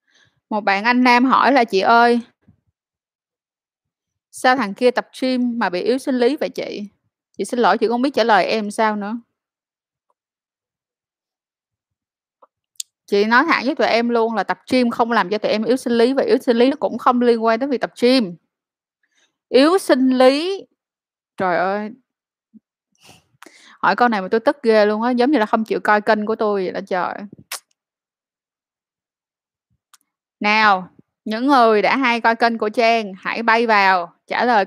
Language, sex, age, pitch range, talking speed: Vietnamese, female, 20-39, 210-250 Hz, 175 wpm